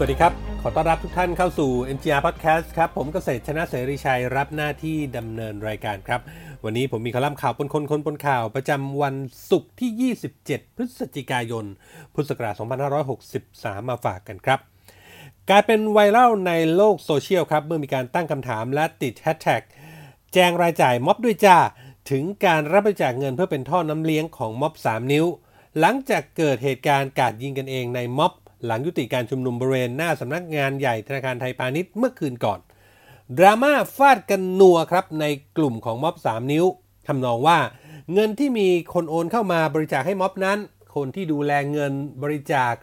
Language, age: Thai, 30-49